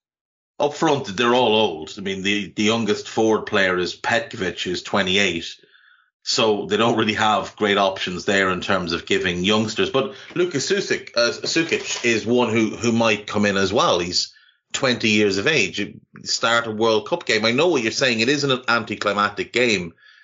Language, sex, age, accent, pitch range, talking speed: English, male, 30-49, Irish, 105-165 Hz, 190 wpm